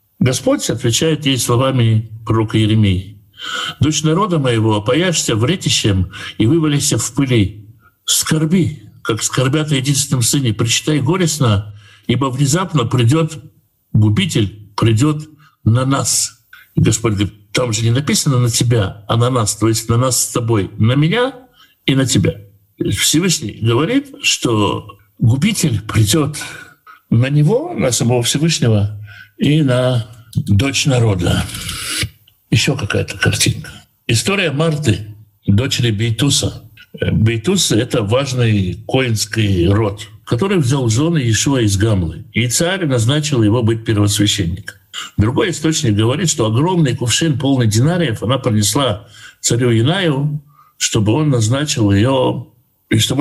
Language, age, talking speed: Russian, 60-79, 120 wpm